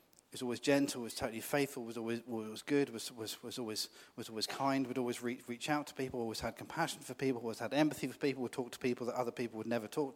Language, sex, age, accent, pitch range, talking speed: English, male, 40-59, British, 115-140 Hz, 265 wpm